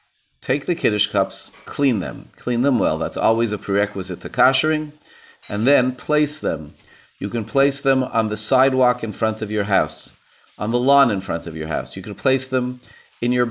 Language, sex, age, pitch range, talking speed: English, male, 40-59, 105-140 Hz, 200 wpm